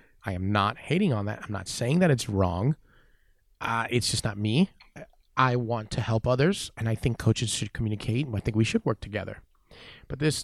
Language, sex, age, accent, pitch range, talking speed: English, male, 30-49, American, 105-130 Hz, 215 wpm